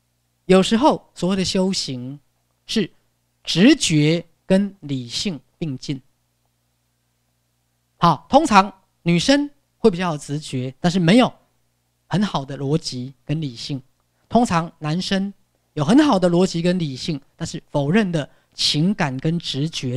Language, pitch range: Chinese, 120-190 Hz